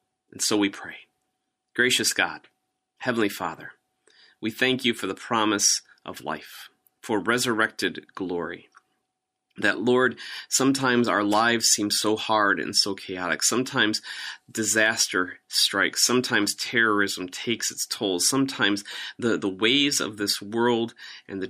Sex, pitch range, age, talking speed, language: male, 95-115 Hz, 30-49, 130 wpm, English